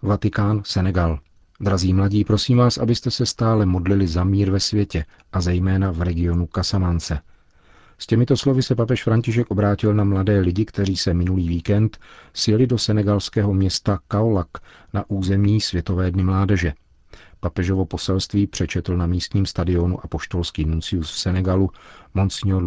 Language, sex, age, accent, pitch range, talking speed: Czech, male, 40-59, native, 85-100 Hz, 145 wpm